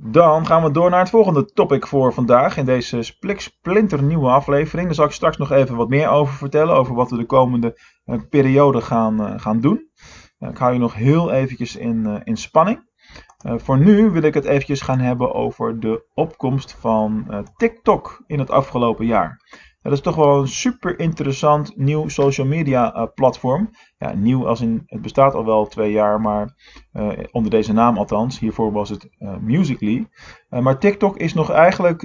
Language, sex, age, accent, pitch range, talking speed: Dutch, male, 20-39, Dutch, 115-155 Hz, 180 wpm